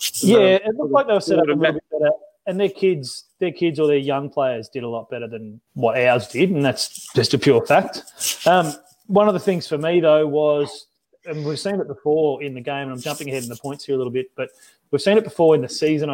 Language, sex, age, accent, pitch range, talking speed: English, male, 30-49, Australian, 130-165 Hz, 265 wpm